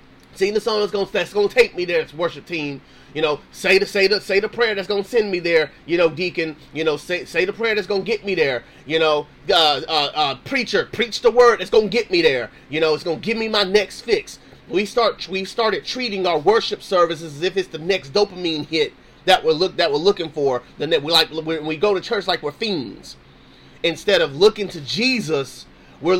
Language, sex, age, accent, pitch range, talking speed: English, male, 30-49, American, 160-240 Hz, 235 wpm